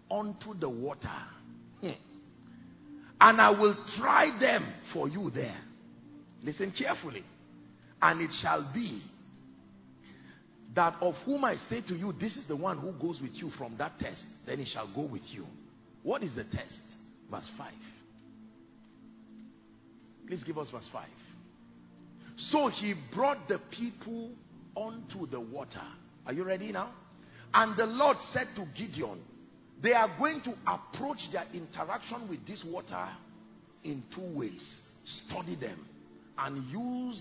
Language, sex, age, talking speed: English, male, 50-69, 140 wpm